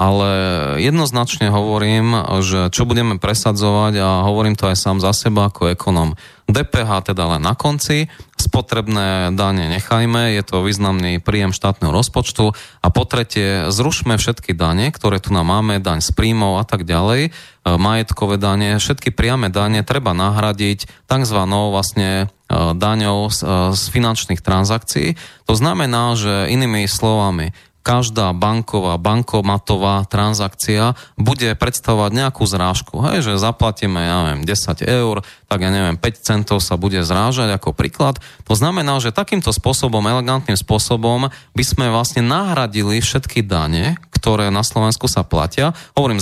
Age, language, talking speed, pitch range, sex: 20-39, Slovak, 140 wpm, 95-120 Hz, male